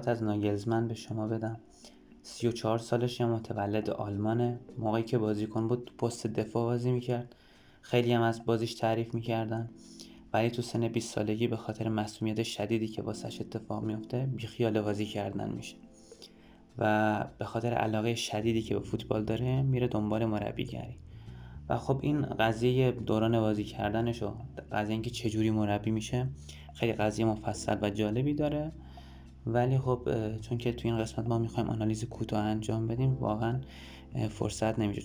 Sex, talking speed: male, 160 wpm